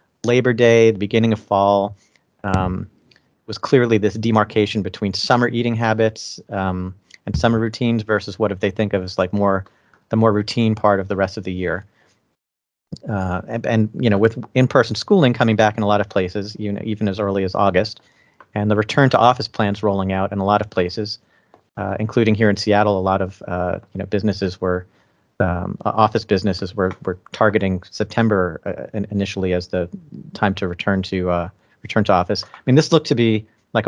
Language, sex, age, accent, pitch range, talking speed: English, male, 40-59, American, 95-115 Hz, 200 wpm